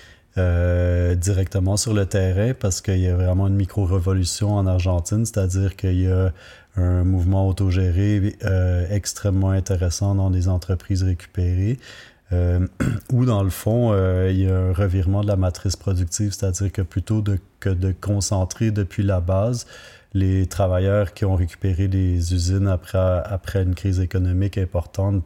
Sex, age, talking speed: male, 30-49, 155 wpm